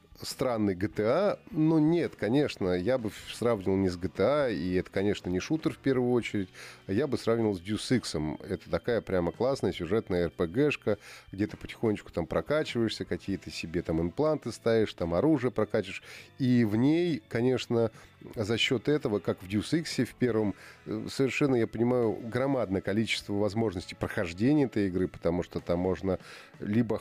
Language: Russian